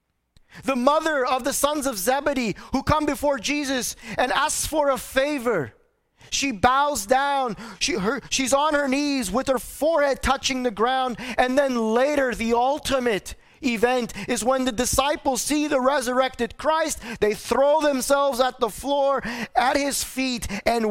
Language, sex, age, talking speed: English, male, 30-49, 150 wpm